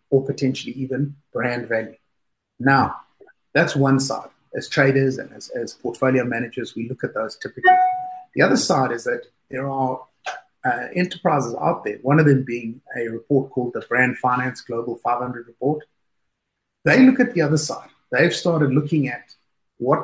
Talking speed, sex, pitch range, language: 170 wpm, male, 130-155 Hz, English